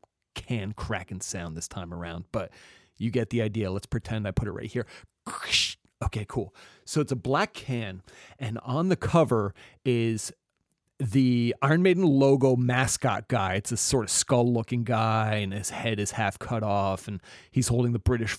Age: 30-49